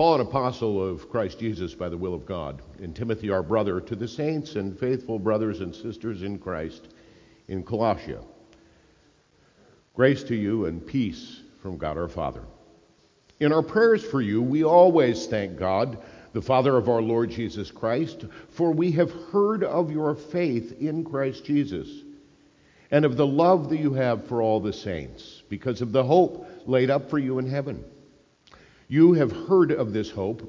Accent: American